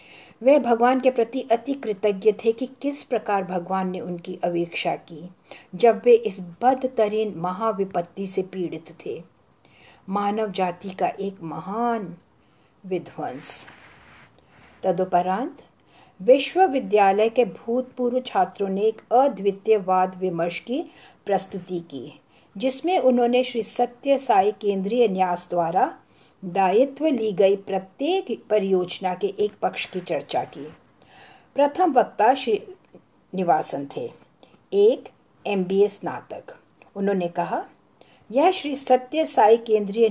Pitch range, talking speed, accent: 185-255 Hz, 110 wpm, Indian